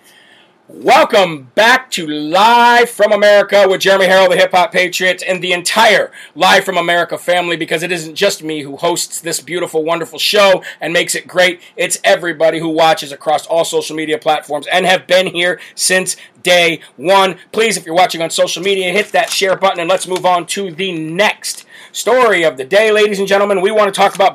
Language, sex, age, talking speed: English, male, 40-59, 200 wpm